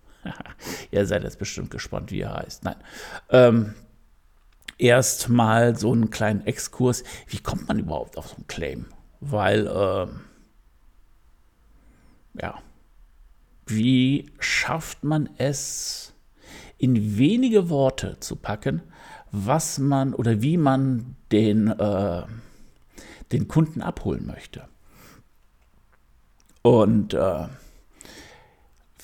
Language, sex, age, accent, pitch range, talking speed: German, male, 60-79, German, 110-145 Hz, 100 wpm